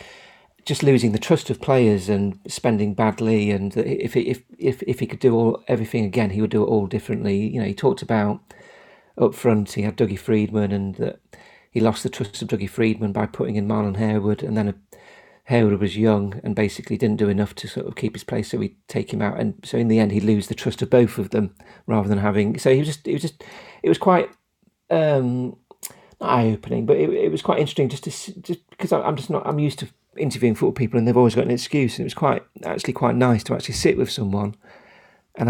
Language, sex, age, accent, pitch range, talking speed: English, male, 40-59, British, 105-125 Hz, 240 wpm